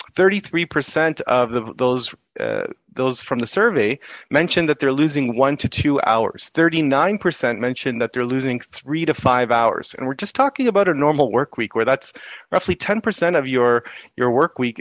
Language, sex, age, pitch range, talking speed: English, male, 30-49, 120-155 Hz, 165 wpm